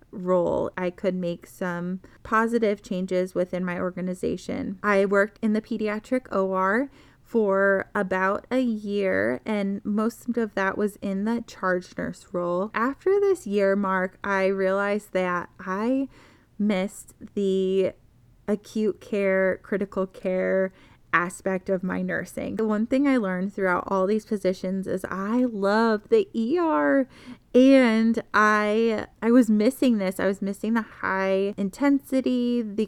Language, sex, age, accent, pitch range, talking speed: English, female, 20-39, American, 190-230 Hz, 135 wpm